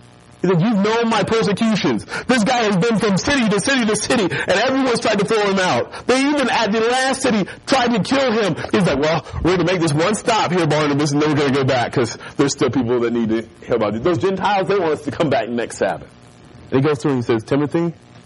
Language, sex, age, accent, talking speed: English, male, 30-49, American, 260 wpm